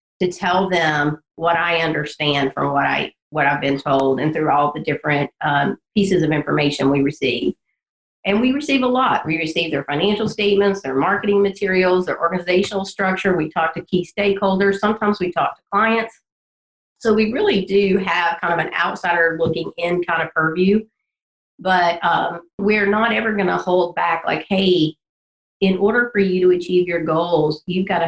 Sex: female